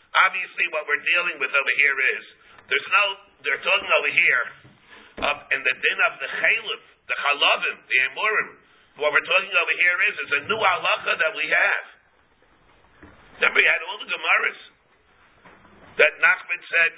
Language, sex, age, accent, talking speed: English, male, 50-69, American, 165 wpm